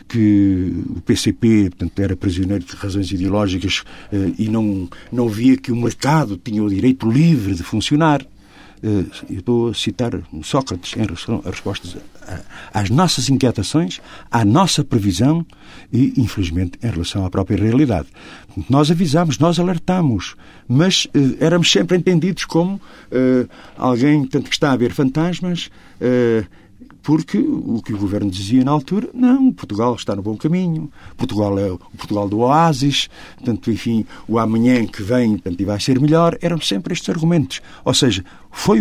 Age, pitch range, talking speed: 50-69, 100-150 Hz, 160 wpm